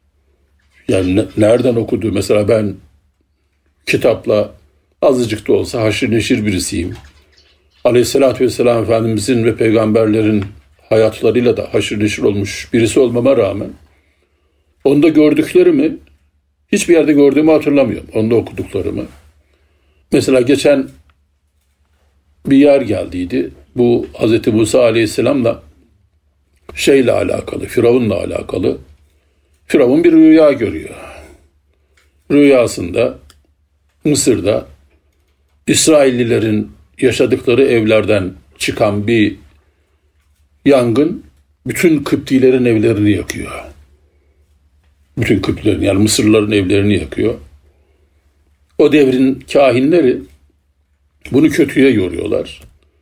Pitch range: 75-110 Hz